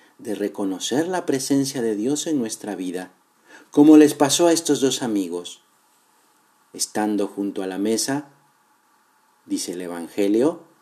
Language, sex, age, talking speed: Spanish, male, 50-69, 135 wpm